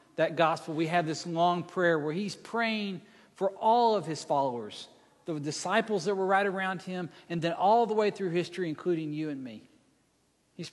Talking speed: 190 wpm